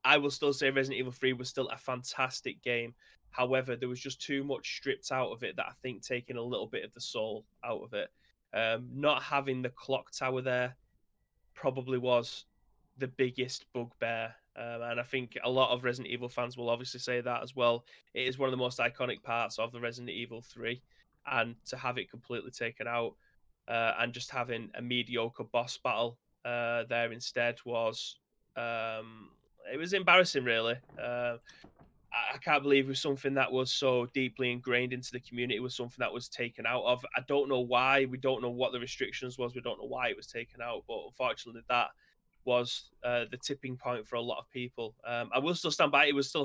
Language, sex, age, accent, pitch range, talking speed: English, male, 20-39, British, 120-130 Hz, 215 wpm